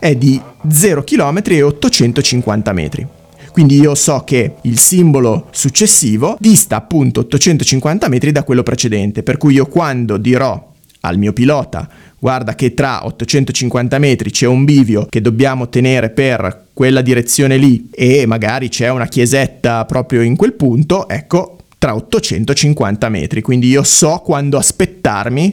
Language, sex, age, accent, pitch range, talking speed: Italian, male, 30-49, native, 120-155 Hz, 145 wpm